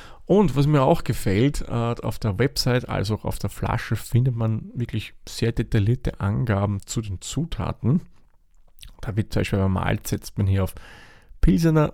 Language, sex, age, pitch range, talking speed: German, male, 40-59, 105-125 Hz, 160 wpm